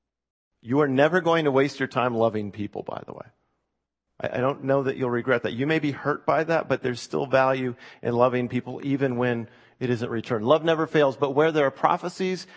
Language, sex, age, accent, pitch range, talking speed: English, male, 40-59, American, 110-140 Hz, 220 wpm